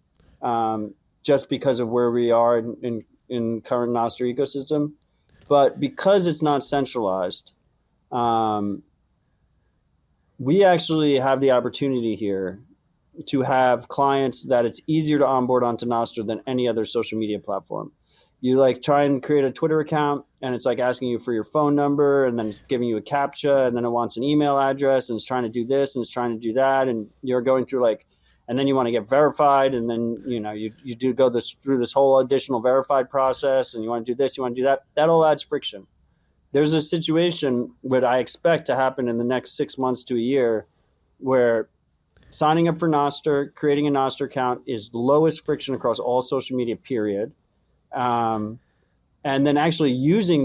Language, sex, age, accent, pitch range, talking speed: English, male, 30-49, American, 120-140 Hz, 195 wpm